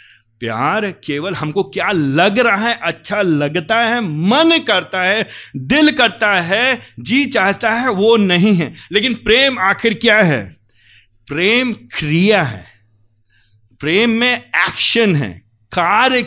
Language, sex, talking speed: Hindi, male, 130 wpm